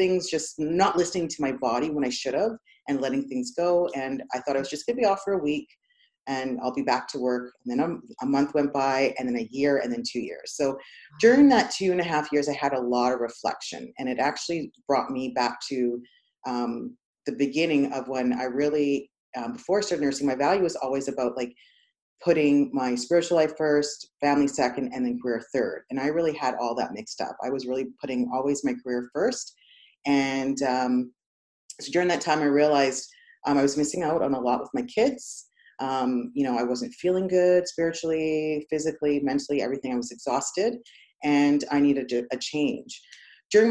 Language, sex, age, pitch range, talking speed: English, female, 30-49, 130-160 Hz, 210 wpm